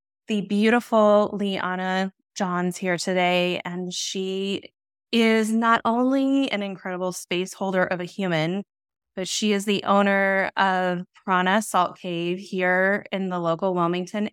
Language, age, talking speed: English, 20-39, 135 wpm